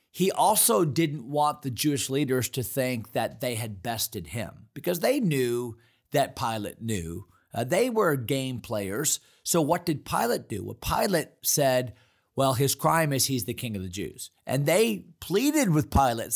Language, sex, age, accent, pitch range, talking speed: English, male, 40-59, American, 115-155 Hz, 175 wpm